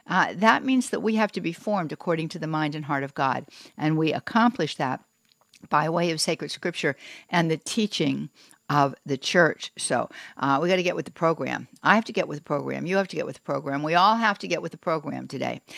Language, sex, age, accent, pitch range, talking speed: English, female, 60-79, American, 155-210 Hz, 245 wpm